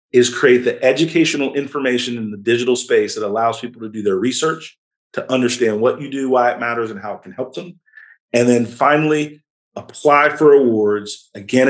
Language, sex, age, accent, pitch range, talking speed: English, male, 40-59, American, 115-145 Hz, 190 wpm